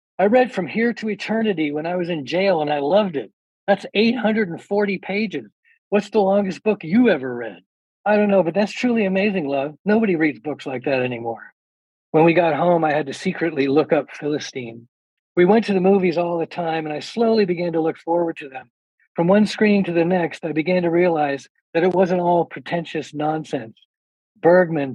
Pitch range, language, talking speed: 145-190 Hz, English, 200 wpm